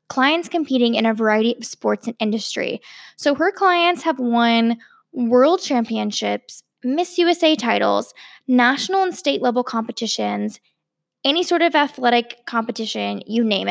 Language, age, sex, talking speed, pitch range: English, 10-29, female, 135 wpm, 220-275 Hz